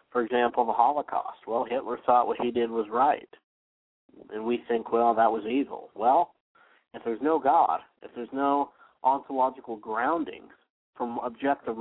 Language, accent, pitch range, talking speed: English, American, 115-145 Hz, 160 wpm